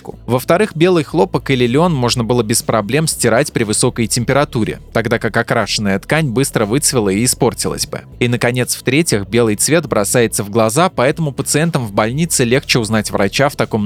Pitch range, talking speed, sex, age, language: 115-145 Hz, 170 wpm, male, 20-39, Russian